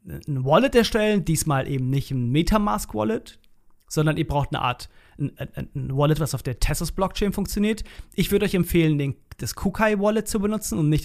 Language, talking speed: German, 155 wpm